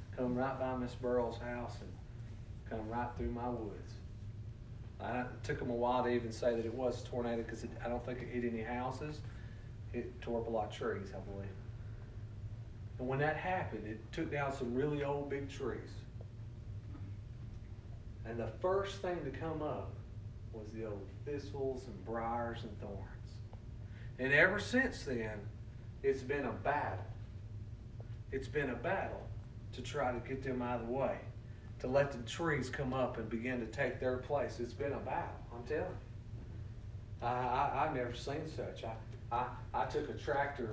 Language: English